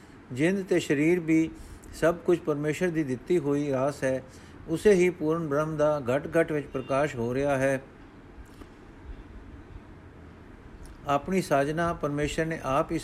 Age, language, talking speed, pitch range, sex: 50-69, Punjabi, 140 wpm, 135-185 Hz, male